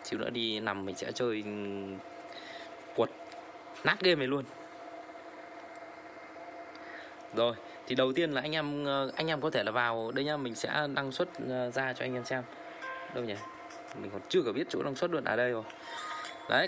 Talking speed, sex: 185 wpm, male